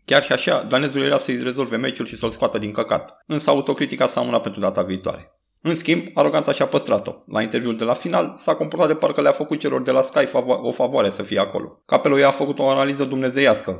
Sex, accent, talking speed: male, native, 215 wpm